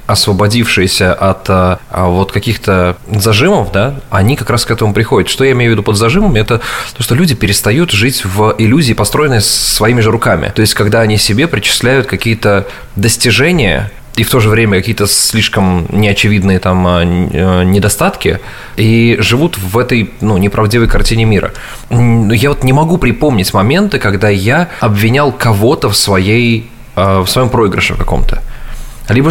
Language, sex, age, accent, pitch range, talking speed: Russian, male, 20-39, native, 100-120 Hz, 150 wpm